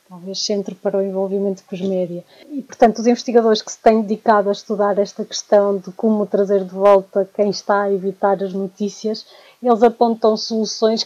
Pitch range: 200-225 Hz